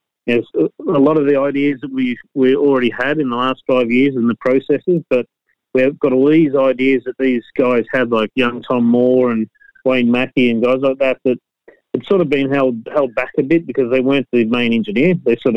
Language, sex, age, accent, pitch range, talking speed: English, male, 30-49, Australian, 120-135 Hz, 225 wpm